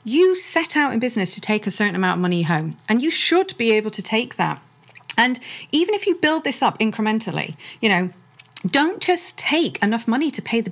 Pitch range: 190-280 Hz